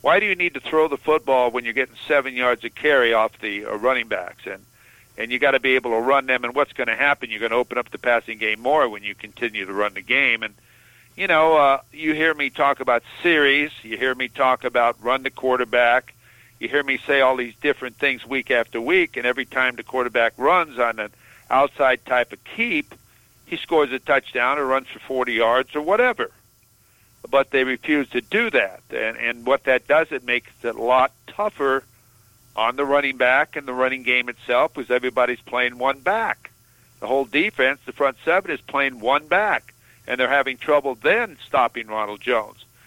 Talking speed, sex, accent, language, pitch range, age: 210 wpm, male, American, English, 115-145 Hz, 50-69